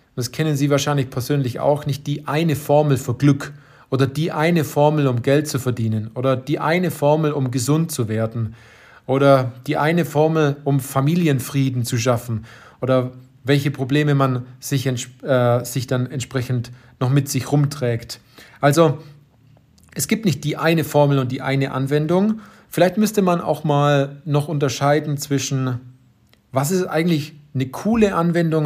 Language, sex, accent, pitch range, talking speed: German, male, German, 125-150 Hz, 155 wpm